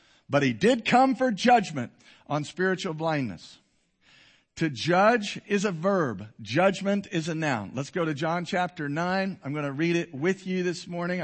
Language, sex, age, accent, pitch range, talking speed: English, male, 50-69, American, 150-210 Hz, 175 wpm